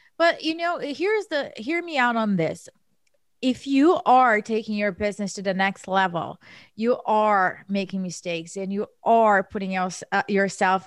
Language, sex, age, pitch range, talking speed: English, female, 30-49, 205-280 Hz, 160 wpm